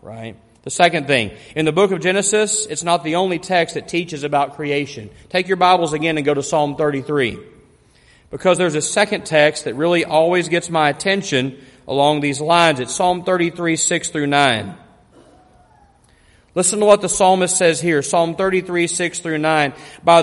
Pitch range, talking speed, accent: 150-195 Hz, 180 wpm, American